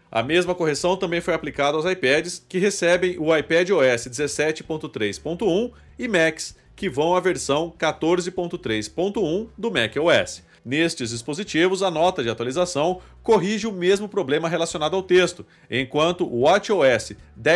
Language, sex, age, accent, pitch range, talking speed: Portuguese, male, 40-59, Brazilian, 145-190 Hz, 135 wpm